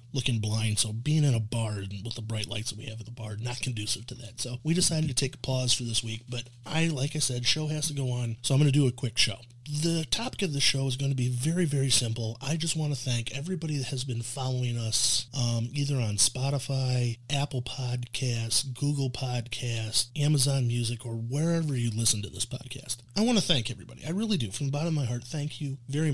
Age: 30-49